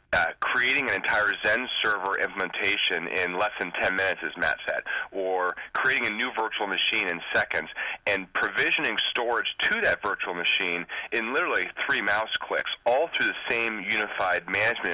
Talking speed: 165 wpm